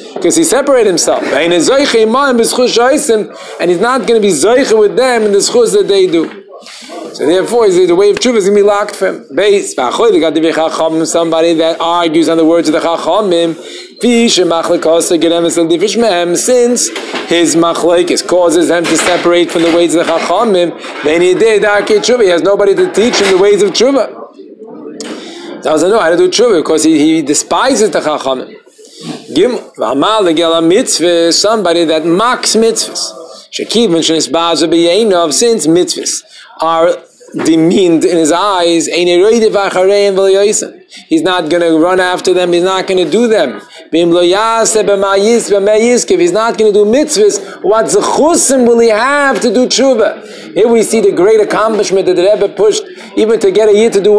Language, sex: English, male